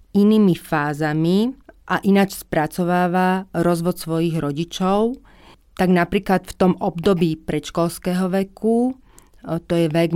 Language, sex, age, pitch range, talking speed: Slovak, female, 30-49, 165-185 Hz, 105 wpm